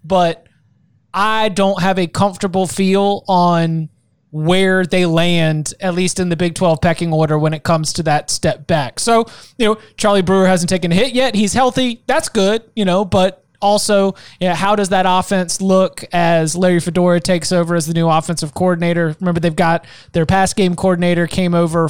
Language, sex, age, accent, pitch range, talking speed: English, male, 20-39, American, 165-190 Hz, 195 wpm